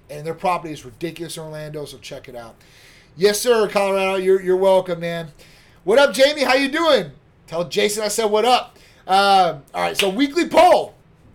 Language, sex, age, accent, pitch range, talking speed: English, male, 30-49, American, 155-210 Hz, 190 wpm